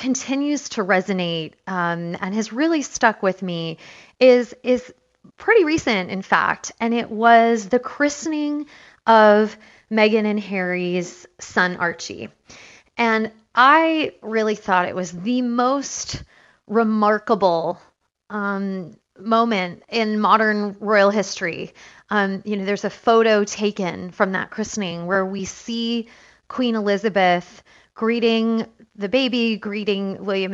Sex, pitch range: female, 200-245 Hz